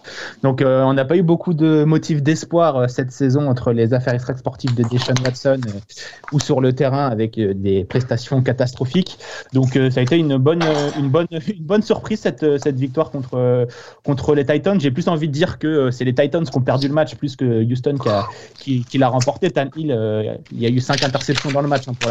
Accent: French